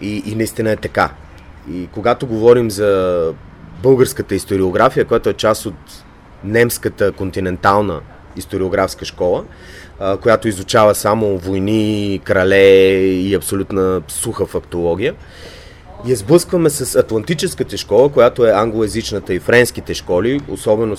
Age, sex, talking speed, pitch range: 30-49, male, 115 wpm, 95-120 Hz